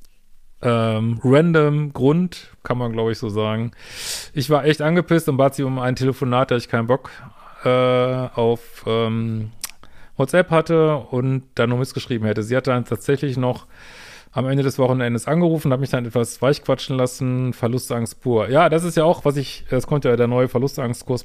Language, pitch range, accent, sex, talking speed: German, 120-150 Hz, German, male, 180 wpm